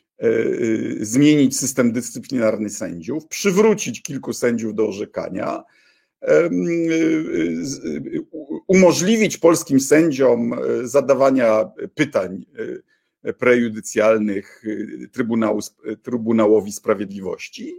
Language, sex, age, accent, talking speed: Polish, male, 50-69, native, 55 wpm